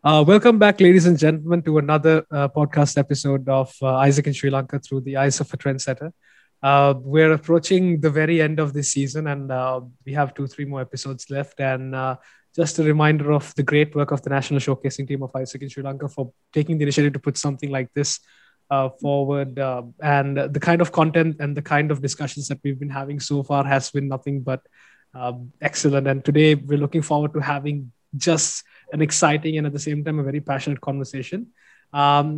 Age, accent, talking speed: 20-39, Indian, 210 wpm